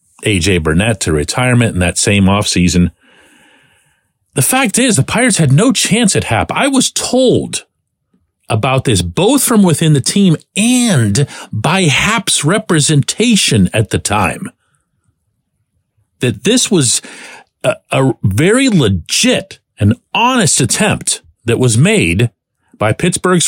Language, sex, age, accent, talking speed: English, male, 50-69, American, 130 wpm